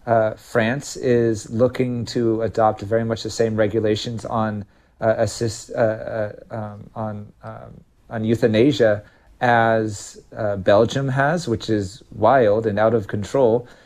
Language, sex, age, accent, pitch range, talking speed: English, male, 40-59, American, 110-130 Hz, 140 wpm